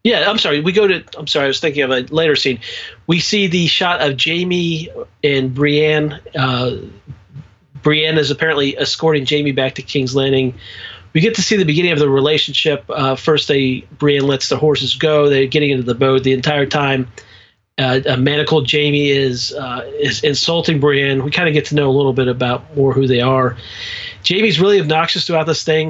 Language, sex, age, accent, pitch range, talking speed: English, male, 40-59, American, 130-155 Hz, 205 wpm